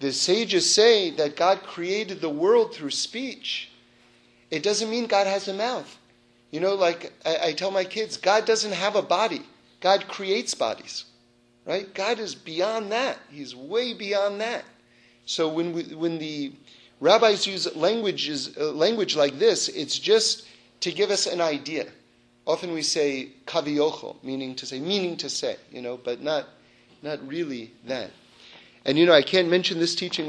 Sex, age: male, 40-59